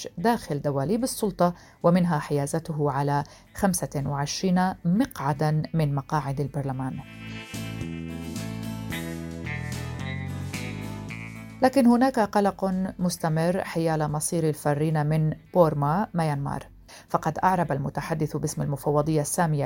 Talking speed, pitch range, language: 80 wpm, 145-180 Hz, Arabic